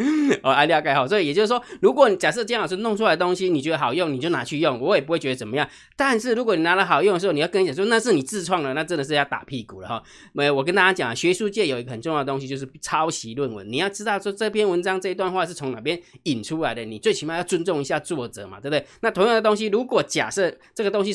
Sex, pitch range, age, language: male, 140-210 Hz, 20-39, Chinese